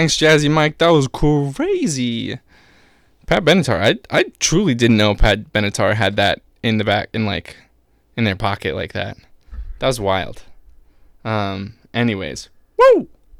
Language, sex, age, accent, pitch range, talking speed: English, male, 20-39, American, 95-125 Hz, 150 wpm